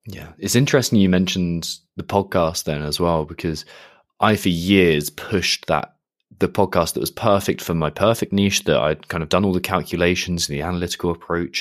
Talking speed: 190 wpm